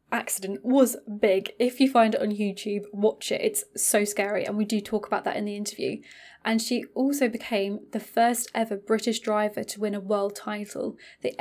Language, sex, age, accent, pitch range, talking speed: English, female, 10-29, British, 205-230 Hz, 200 wpm